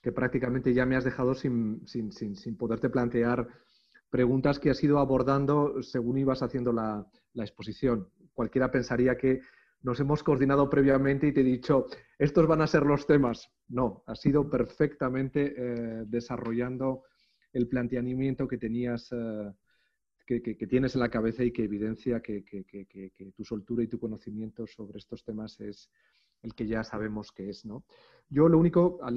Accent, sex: Spanish, male